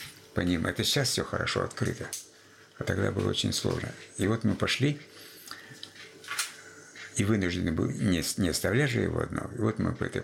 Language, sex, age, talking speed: Russian, male, 60-79, 170 wpm